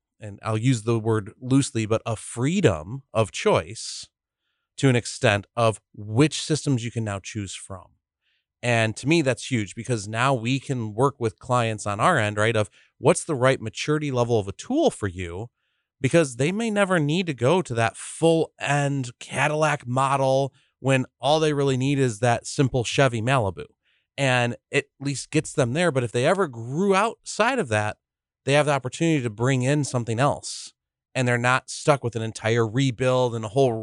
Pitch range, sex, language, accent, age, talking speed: 110-140 Hz, male, English, American, 30-49, 190 wpm